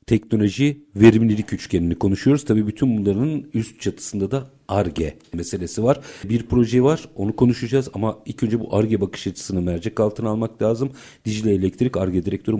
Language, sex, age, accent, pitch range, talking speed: Turkish, male, 50-69, native, 100-135 Hz, 155 wpm